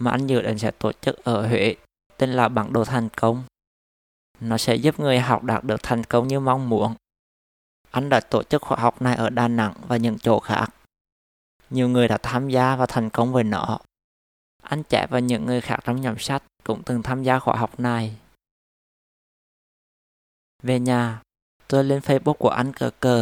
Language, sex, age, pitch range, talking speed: Vietnamese, male, 20-39, 110-125 Hz, 195 wpm